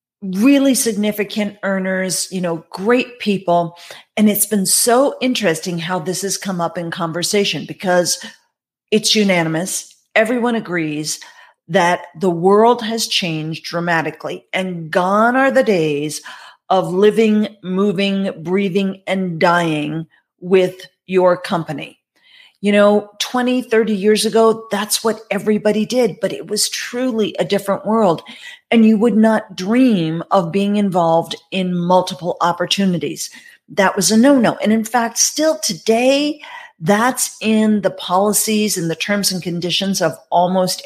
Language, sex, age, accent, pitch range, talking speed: English, female, 40-59, American, 180-220 Hz, 135 wpm